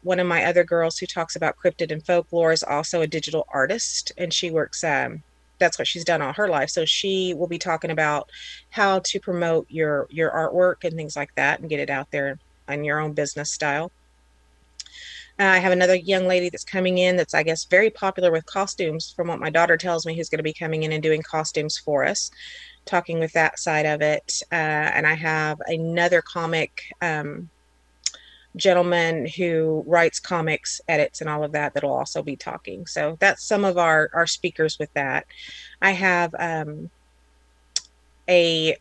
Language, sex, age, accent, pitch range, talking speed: English, female, 30-49, American, 150-180 Hz, 195 wpm